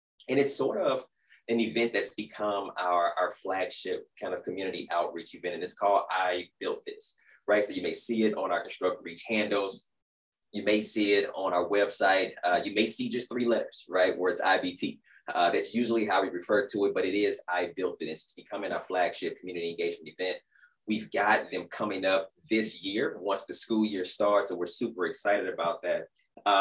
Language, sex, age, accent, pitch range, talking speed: English, male, 20-39, American, 95-130 Hz, 205 wpm